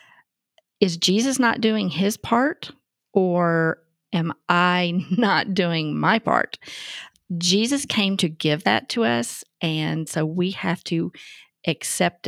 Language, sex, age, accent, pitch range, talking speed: English, female, 40-59, American, 160-195 Hz, 125 wpm